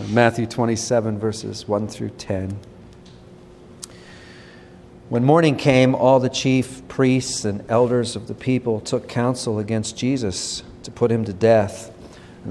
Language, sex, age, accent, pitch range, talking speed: English, male, 40-59, American, 105-125 Hz, 135 wpm